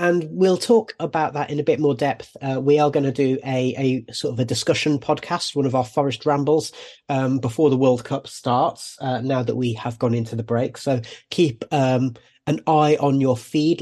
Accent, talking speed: British, 220 wpm